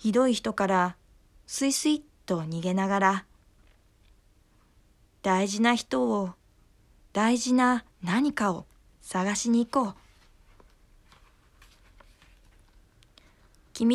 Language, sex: Japanese, female